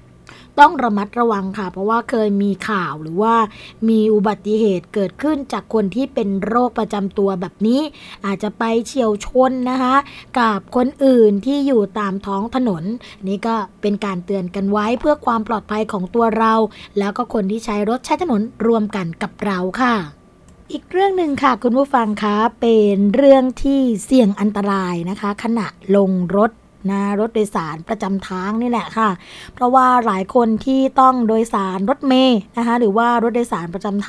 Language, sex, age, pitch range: Thai, female, 20-39, 200-240 Hz